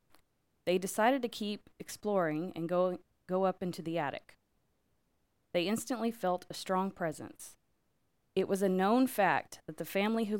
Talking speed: 155 wpm